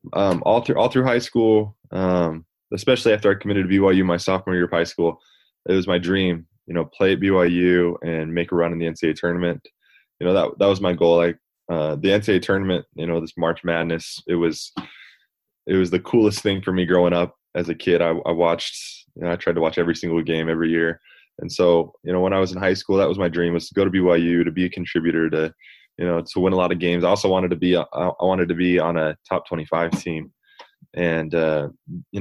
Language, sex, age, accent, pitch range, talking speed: English, male, 20-39, American, 85-90 Hz, 245 wpm